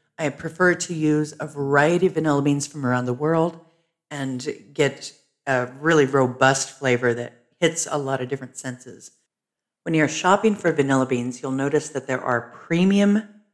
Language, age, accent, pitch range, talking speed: English, 50-69, American, 125-160 Hz, 170 wpm